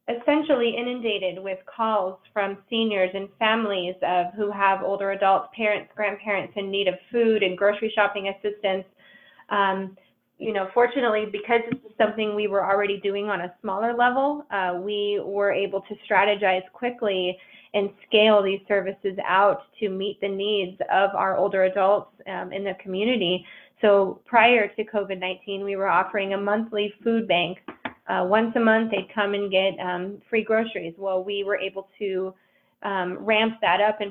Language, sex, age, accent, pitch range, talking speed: English, female, 20-39, American, 190-220 Hz, 170 wpm